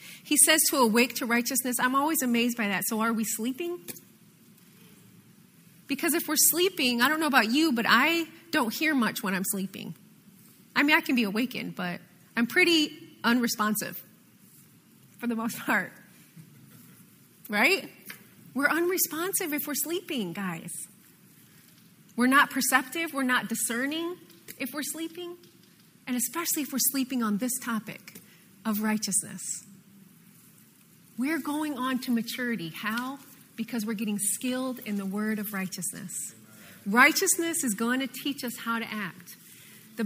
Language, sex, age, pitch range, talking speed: English, female, 30-49, 205-290 Hz, 145 wpm